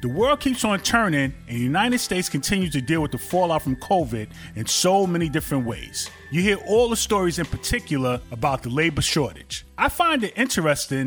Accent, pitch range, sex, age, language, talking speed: American, 135-195 Hz, male, 30-49, English, 200 wpm